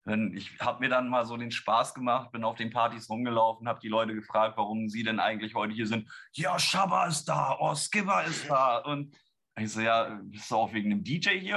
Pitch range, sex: 115-150 Hz, male